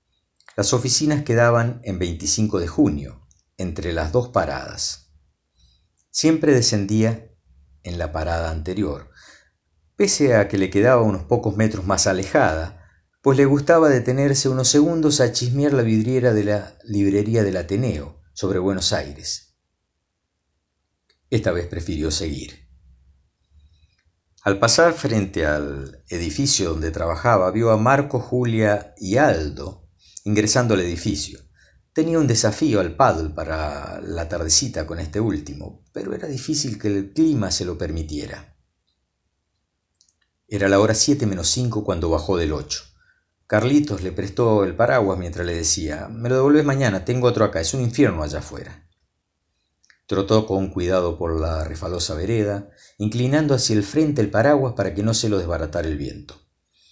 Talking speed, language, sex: 145 wpm, Spanish, male